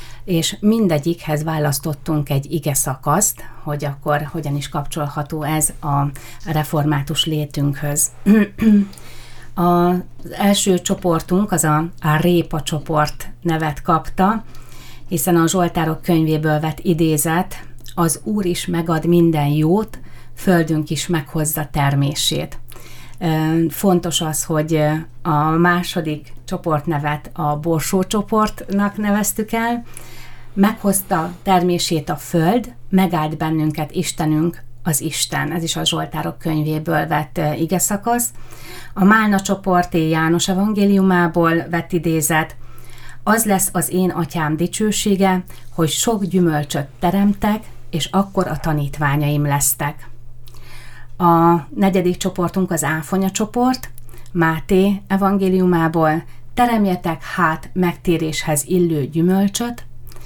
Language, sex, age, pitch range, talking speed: Hungarian, female, 30-49, 150-185 Hz, 105 wpm